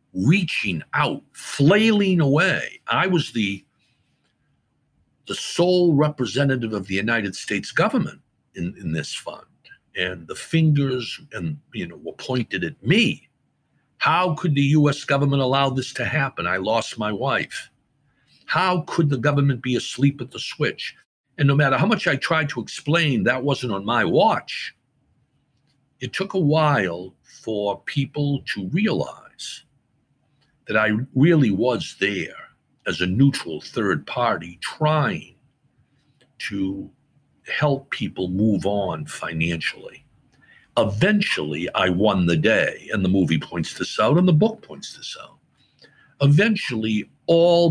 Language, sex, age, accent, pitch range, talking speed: English, male, 60-79, American, 100-150 Hz, 135 wpm